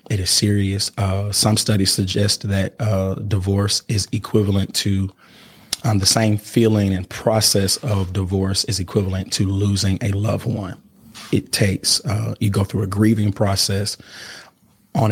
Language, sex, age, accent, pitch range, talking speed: English, male, 30-49, American, 100-110 Hz, 150 wpm